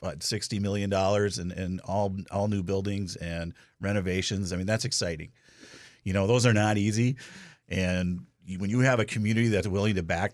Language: English